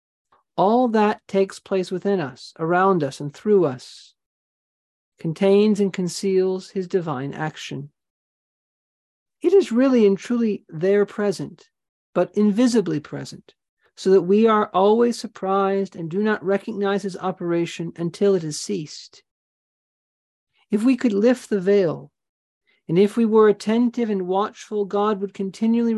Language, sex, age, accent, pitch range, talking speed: English, male, 40-59, American, 175-205 Hz, 135 wpm